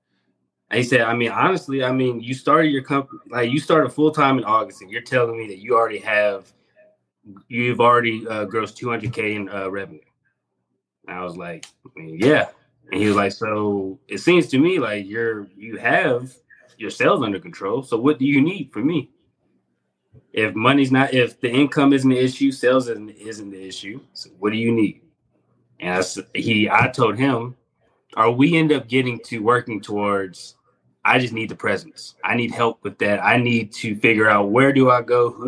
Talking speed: 195 wpm